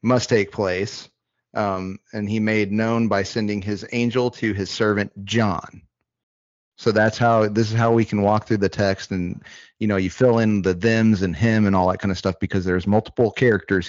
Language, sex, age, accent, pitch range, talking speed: English, male, 30-49, American, 95-115 Hz, 205 wpm